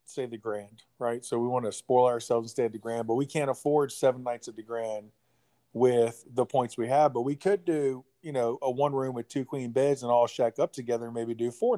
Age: 40-59